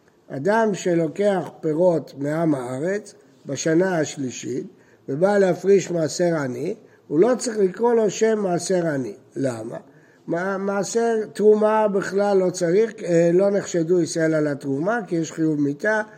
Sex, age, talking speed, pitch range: male, 60-79, 125 wpm, 160-220 Hz